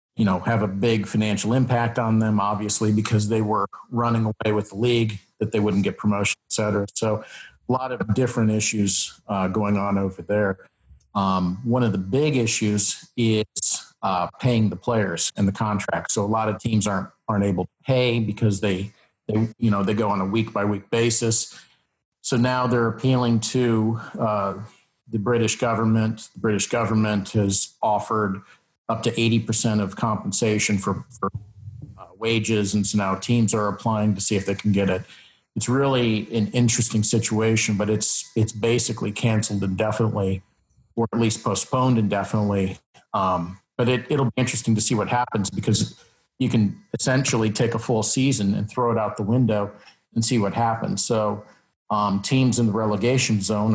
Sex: male